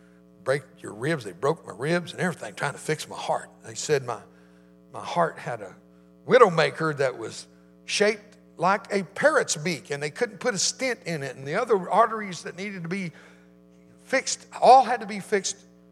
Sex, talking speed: male, 195 wpm